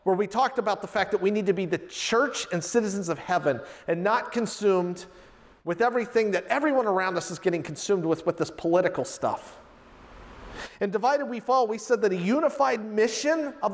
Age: 40-59